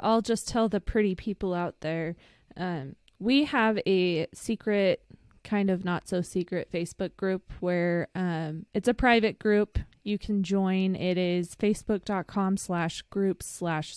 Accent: American